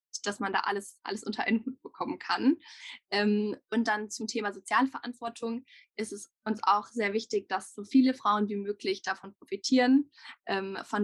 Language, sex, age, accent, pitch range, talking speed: German, female, 10-29, German, 195-235 Hz, 165 wpm